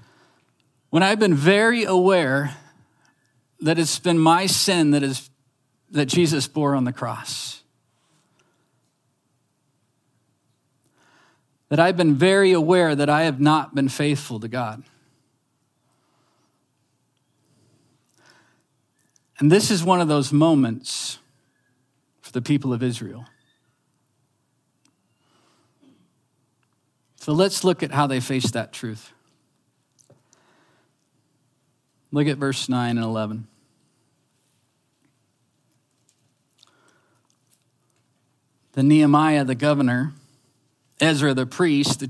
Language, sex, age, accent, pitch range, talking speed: English, male, 40-59, American, 120-145 Hz, 95 wpm